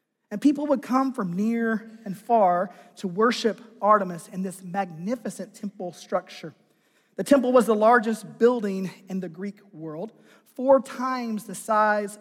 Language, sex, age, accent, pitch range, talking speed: English, male, 40-59, American, 195-235 Hz, 145 wpm